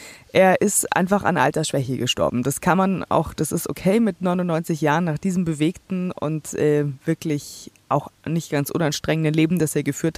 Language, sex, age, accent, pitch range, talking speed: German, female, 20-39, German, 150-175 Hz, 175 wpm